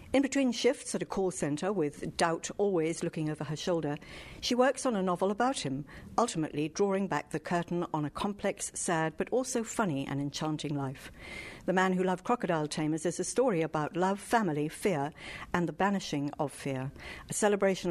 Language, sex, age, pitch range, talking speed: English, female, 60-79, 155-210 Hz, 190 wpm